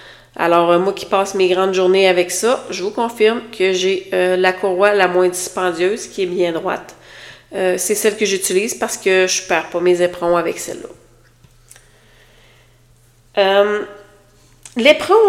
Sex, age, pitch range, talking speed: female, 30-49, 180-210 Hz, 160 wpm